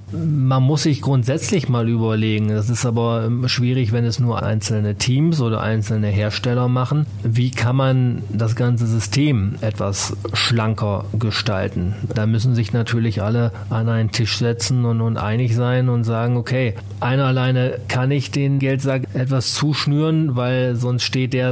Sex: male